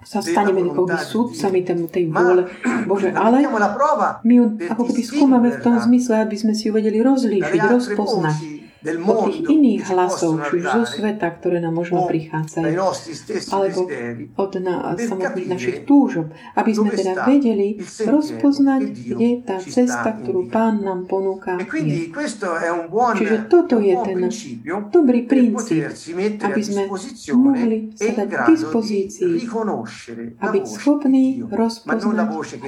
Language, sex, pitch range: Slovak, female, 185-255 Hz